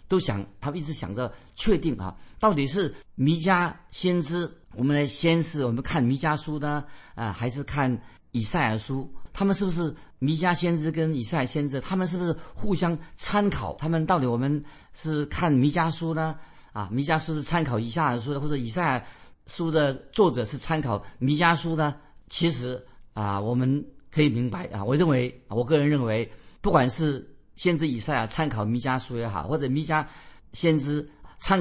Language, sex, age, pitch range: Chinese, male, 50-69, 120-160 Hz